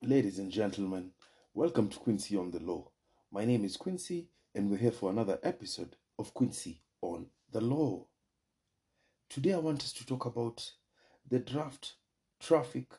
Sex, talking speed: male, 155 wpm